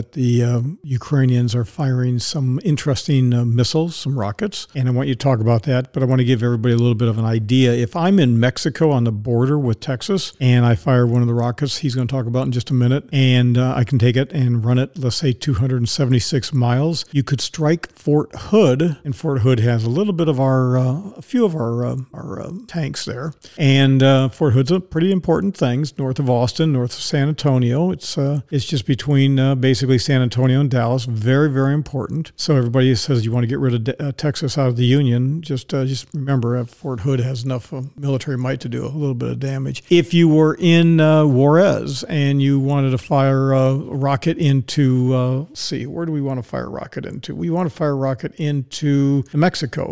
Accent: American